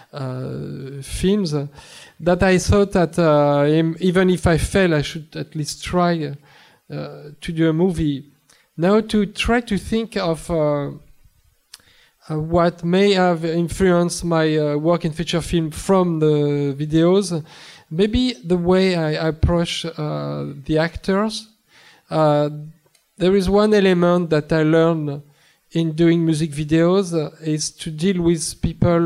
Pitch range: 150-180 Hz